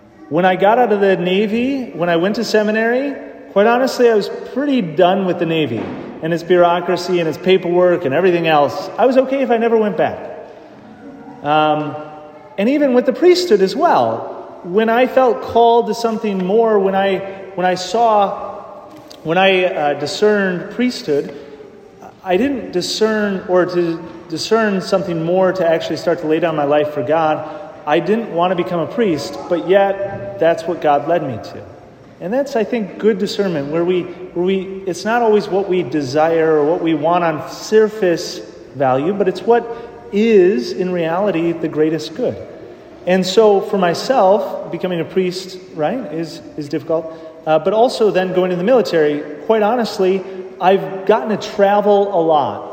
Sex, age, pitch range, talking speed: male, 30-49, 165-215 Hz, 175 wpm